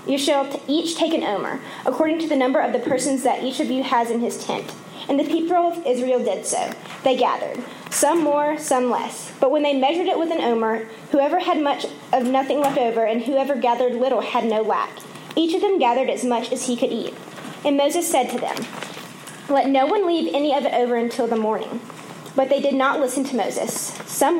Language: English